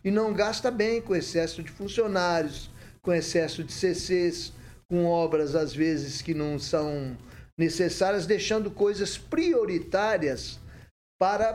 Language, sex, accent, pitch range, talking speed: Portuguese, male, Brazilian, 160-215 Hz, 125 wpm